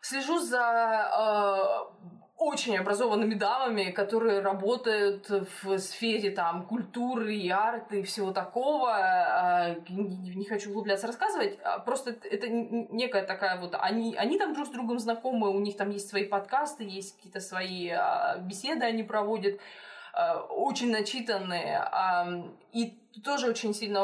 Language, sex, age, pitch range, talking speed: Russian, female, 20-39, 195-235 Hz, 135 wpm